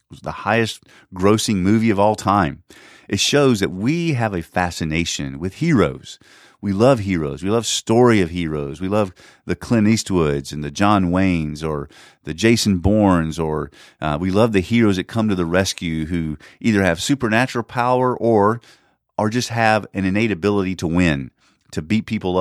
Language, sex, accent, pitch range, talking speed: English, male, American, 85-115 Hz, 175 wpm